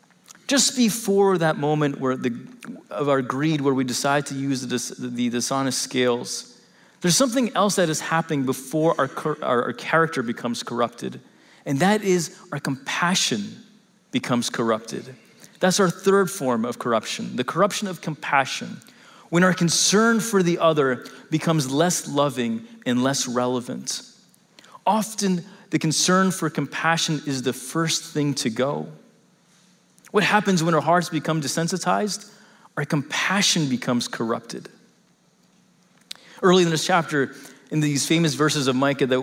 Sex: male